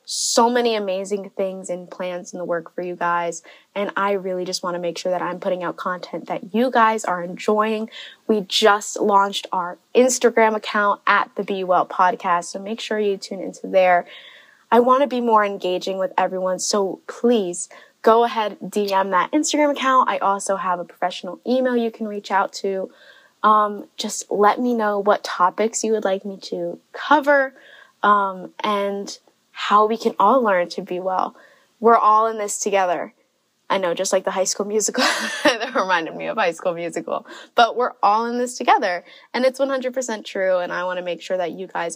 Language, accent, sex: English, American, female